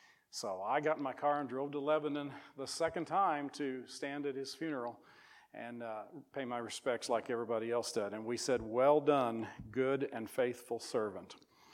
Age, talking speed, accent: 40-59, 185 wpm, American